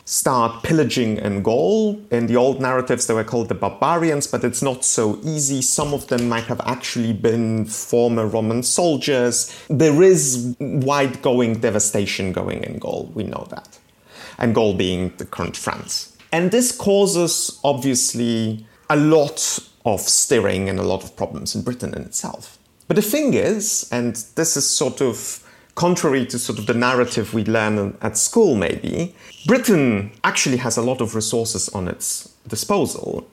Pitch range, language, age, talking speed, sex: 115-160 Hz, English, 30-49, 165 wpm, male